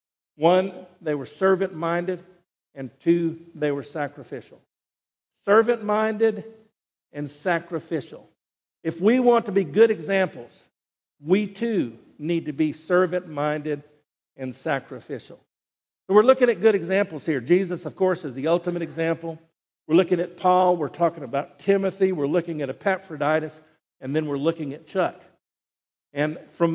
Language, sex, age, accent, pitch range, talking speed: English, male, 50-69, American, 145-180 Hz, 135 wpm